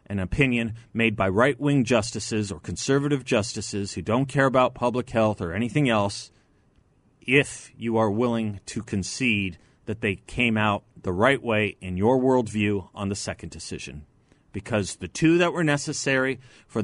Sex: male